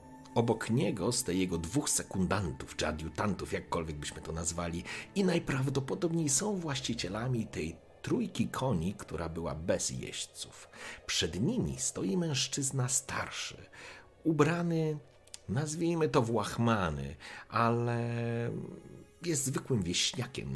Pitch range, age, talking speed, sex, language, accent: 85-135 Hz, 40-59, 110 wpm, male, Polish, native